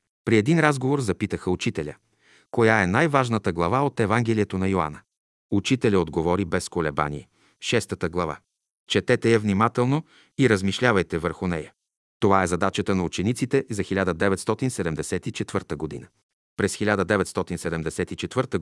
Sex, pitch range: male, 90-120 Hz